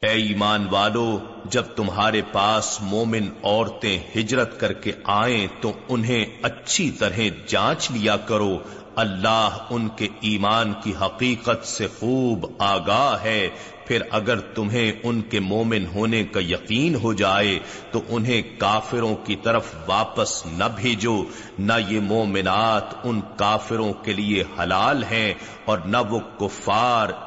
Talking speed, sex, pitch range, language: 135 wpm, male, 105-120 Hz, Urdu